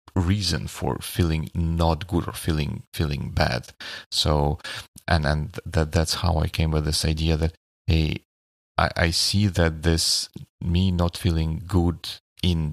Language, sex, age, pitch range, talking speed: Russian, male, 30-49, 80-95 Hz, 150 wpm